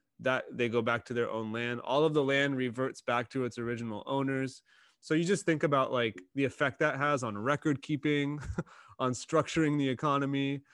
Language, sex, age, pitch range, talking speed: English, male, 30-49, 120-145 Hz, 195 wpm